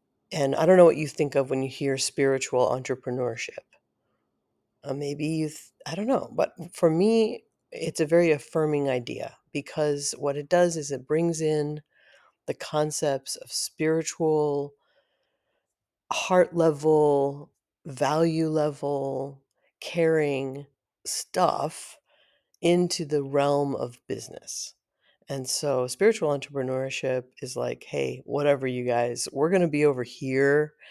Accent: American